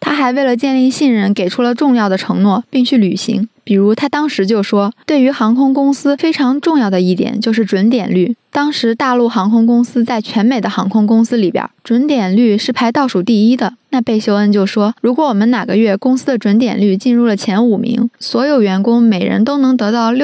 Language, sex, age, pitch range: Chinese, female, 20-39, 210-255 Hz